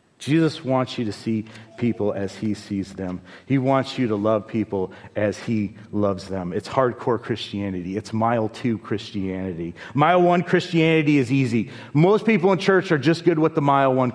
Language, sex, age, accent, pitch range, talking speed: English, male, 40-59, American, 105-135 Hz, 180 wpm